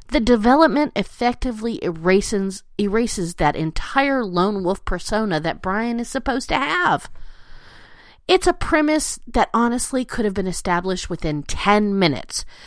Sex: female